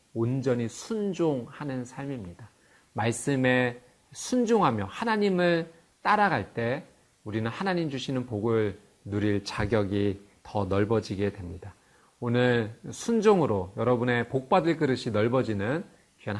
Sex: male